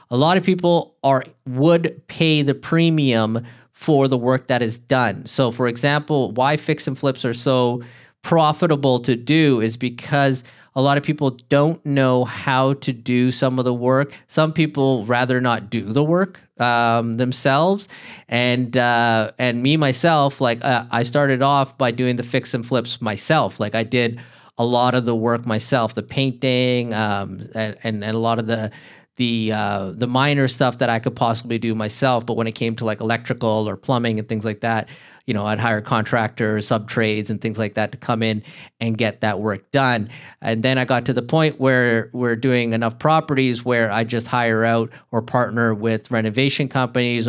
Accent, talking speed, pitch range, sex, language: American, 190 wpm, 115-135 Hz, male, English